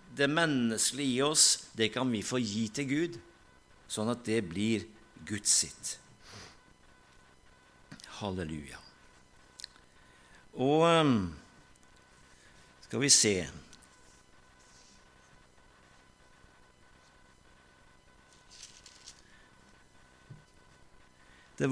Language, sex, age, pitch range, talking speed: Danish, male, 60-79, 110-140 Hz, 60 wpm